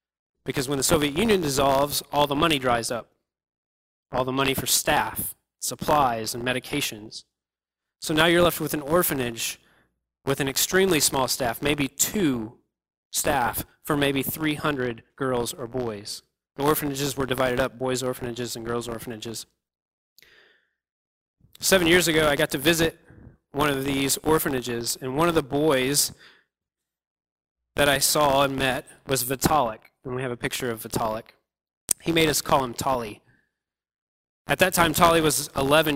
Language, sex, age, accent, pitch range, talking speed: English, male, 20-39, American, 110-145 Hz, 155 wpm